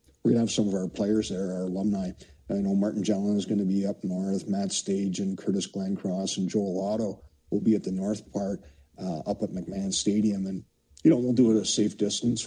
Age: 50-69